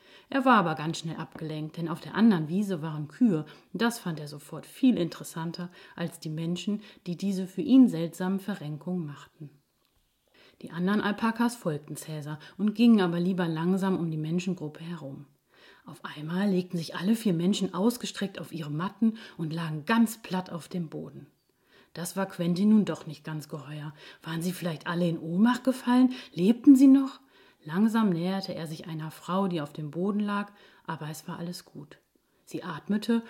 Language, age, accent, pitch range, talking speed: German, 30-49, German, 160-210 Hz, 175 wpm